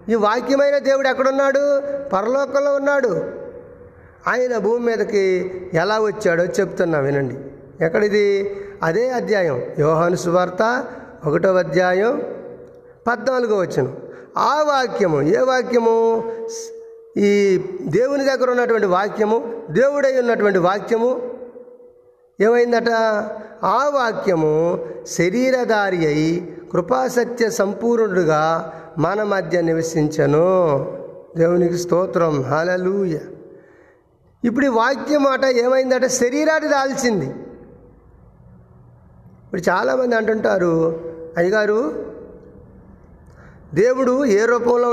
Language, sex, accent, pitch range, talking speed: Telugu, male, native, 185-255 Hz, 80 wpm